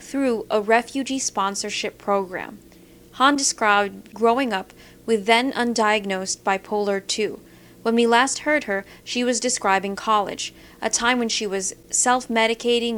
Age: 40-59